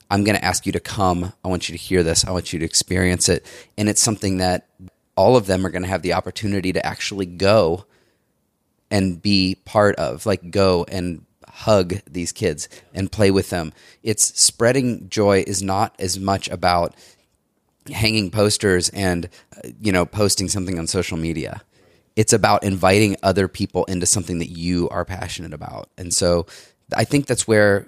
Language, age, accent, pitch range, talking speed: English, 30-49, American, 85-100 Hz, 185 wpm